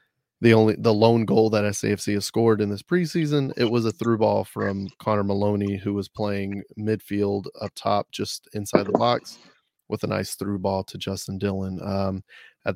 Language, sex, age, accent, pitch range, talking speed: English, male, 20-39, American, 100-115 Hz, 190 wpm